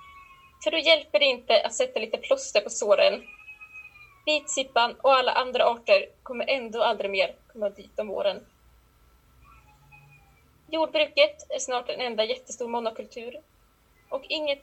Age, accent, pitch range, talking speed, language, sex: 20-39, native, 240-330 Hz, 135 wpm, Swedish, female